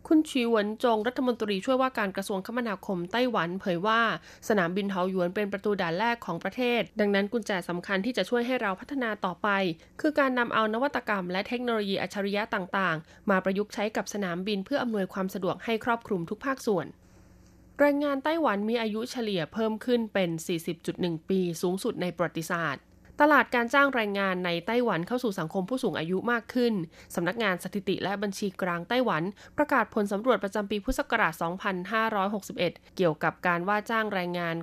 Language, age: Thai, 20-39